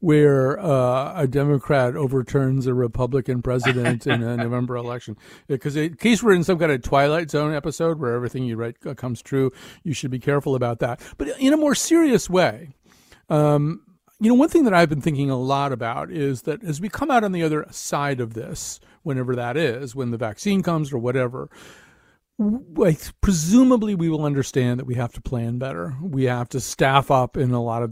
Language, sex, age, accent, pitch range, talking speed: English, male, 40-59, American, 125-165 Hz, 200 wpm